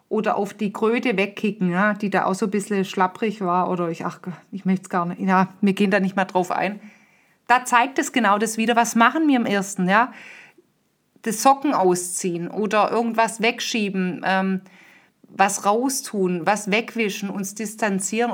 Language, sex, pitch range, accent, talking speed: German, female, 195-245 Hz, German, 180 wpm